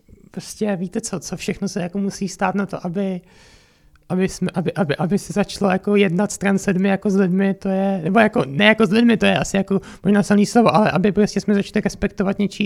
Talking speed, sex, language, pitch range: 230 wpm, male, Czech, 195-220 Hz